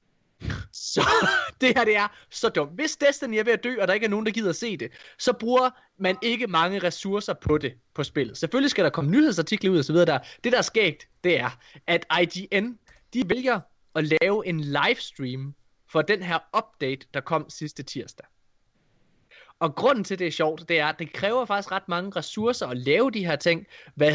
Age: 20-39